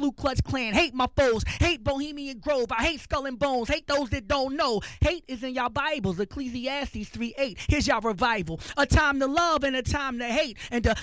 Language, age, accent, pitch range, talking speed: English, 20-39, American, 245-285 Hz, 220 wpm